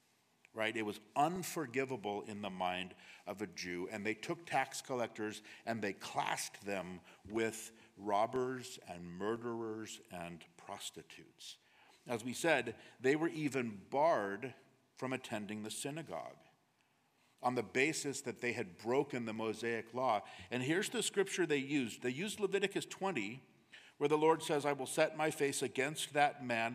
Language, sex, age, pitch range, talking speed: English, male, 50-69, 110-145 Hz, 155 wpm